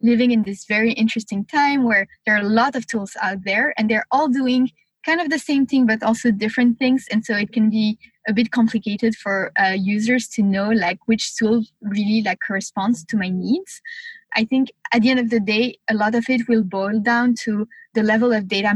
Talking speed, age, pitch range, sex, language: 225 wpm, 20-39, 205-240 Hz, female, English